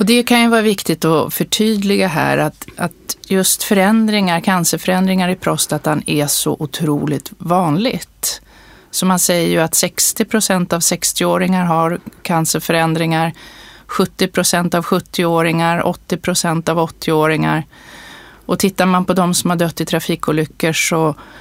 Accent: native